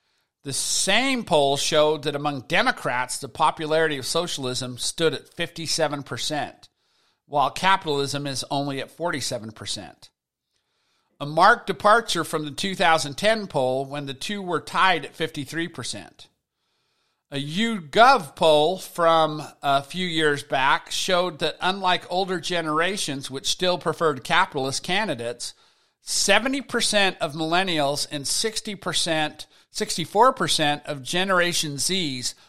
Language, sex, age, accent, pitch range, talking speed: English, male, 50-69, American, 145-190 Hz, 110 wpm